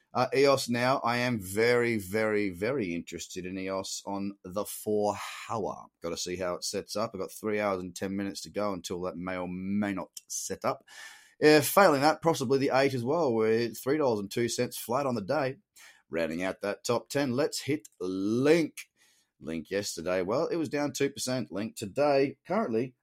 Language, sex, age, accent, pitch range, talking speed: English, male, 30-49, Australian, 100-140 Hz, 195 wpm